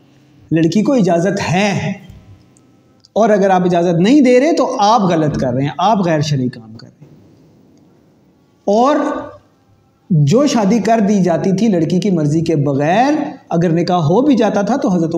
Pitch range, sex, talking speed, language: 155-225 Hz, male, 175 wpm, Urdu